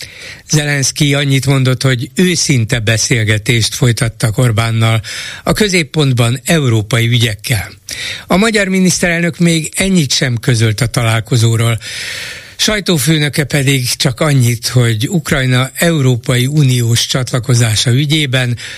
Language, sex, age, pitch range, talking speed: Hungarian, male, 60-79, 120-150 Hz, 95 wpm